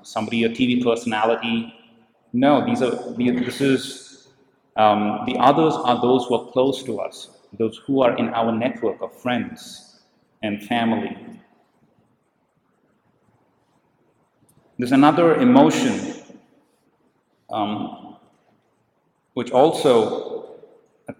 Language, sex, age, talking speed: English, male, 40-59, 100 wpm